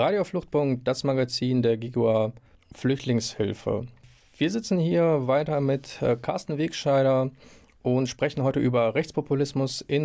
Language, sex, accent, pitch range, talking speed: German, male, German, 120-140 Hz, 120 wpm